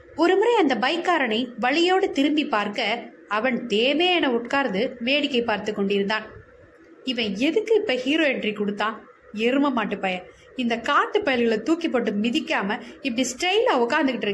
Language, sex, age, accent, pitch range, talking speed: Tamil, female, 20-39, native, 230-330 Hz, 90 wpm